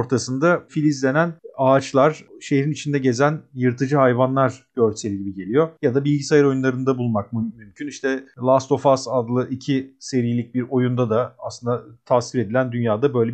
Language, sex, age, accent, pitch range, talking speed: Turkish, male, 40-59, native, 130-180 Hz, 145 wpm